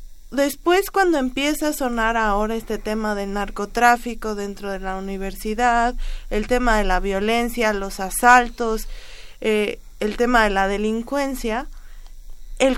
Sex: female